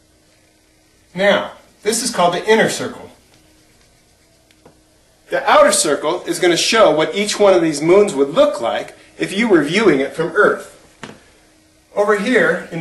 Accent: American